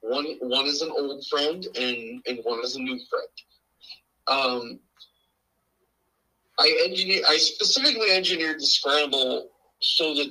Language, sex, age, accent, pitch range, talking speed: English, male, 30-49, American, 130-195 Hz, 135 wpm